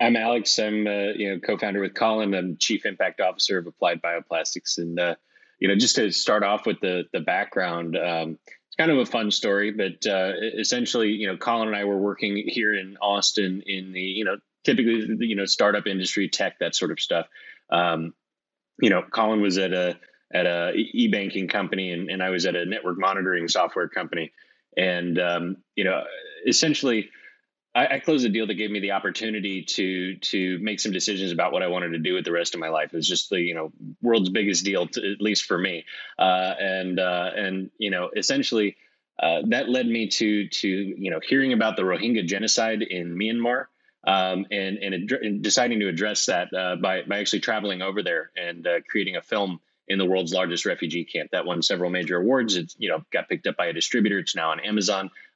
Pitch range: 90-105 Hz